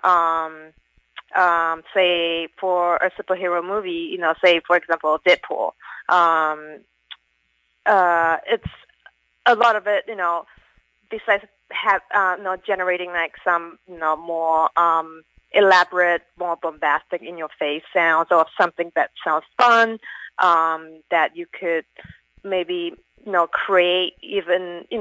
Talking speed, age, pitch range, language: 130 wpm, 20-39, 160-185 Hz, English